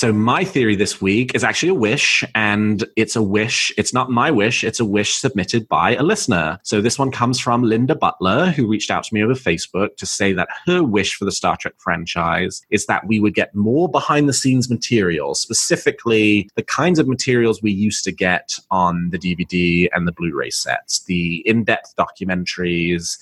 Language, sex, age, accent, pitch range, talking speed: English, male, 30-49, British, 90-115 Hz, 200 wpm